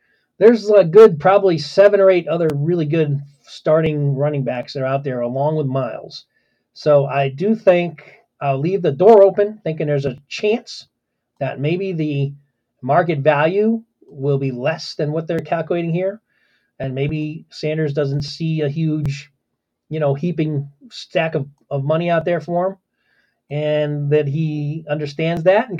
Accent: American